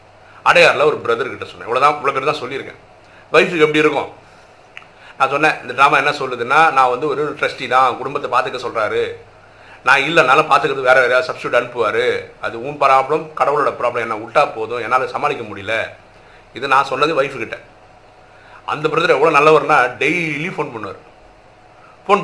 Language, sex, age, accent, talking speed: Tamil, male, 50-69, native, 150 wpm